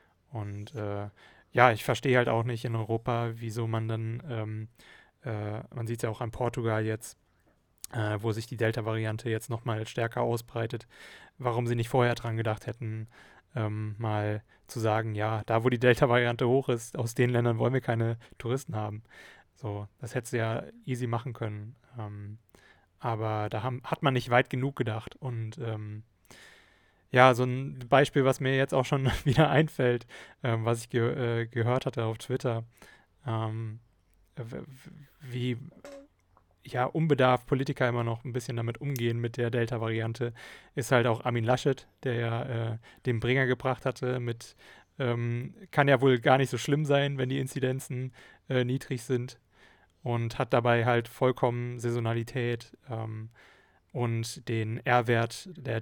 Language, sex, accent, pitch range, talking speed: German, male, German, 110-130 Hz, 160 wpm